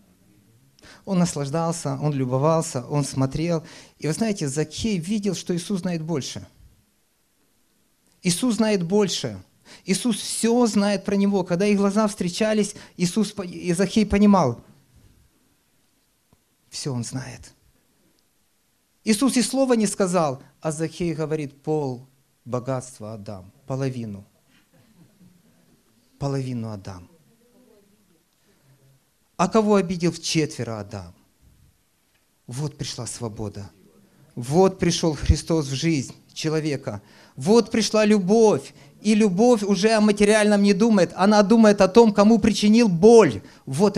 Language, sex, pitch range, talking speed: Russian, male, 135-205 Hz, 110 wpm